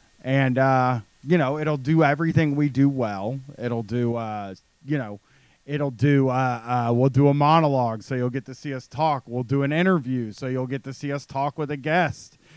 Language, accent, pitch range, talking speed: English, American, 130-150 Hz, 210 wpm